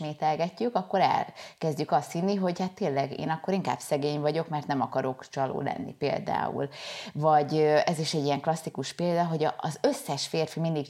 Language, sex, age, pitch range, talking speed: Hungarian, female, 20-39, 140-165 Hz, 165 wpm